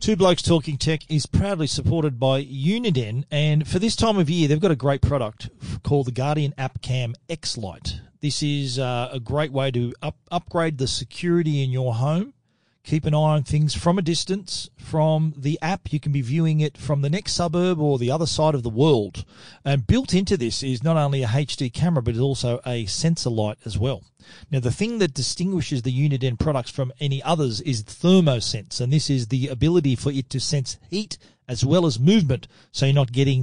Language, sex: English, male